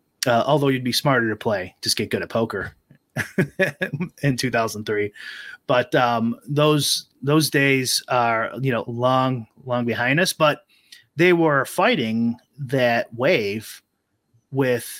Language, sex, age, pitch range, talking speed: English, male, 30-49, 115-145 Hz, 130 wpm